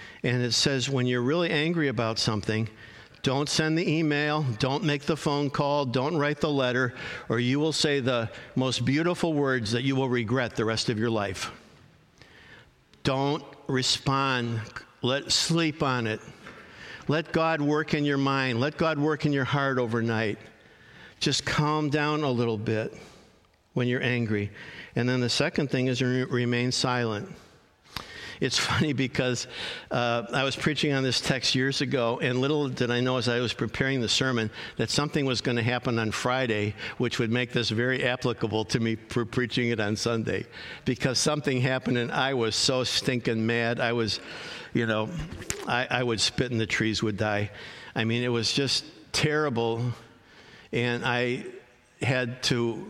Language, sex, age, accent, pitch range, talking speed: English, male, 50-69, American, 115-140 Hz, 170 wpm